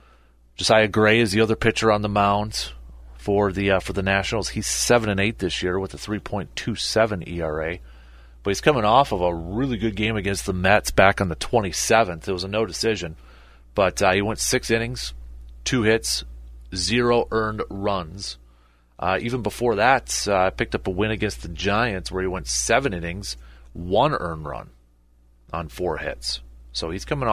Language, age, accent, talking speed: English, 30-49, American, 180 wpm